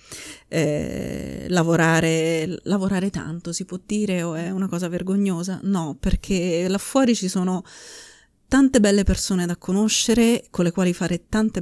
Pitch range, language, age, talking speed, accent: 165-195 Hz, Italian, 30-49, 145 wpm, native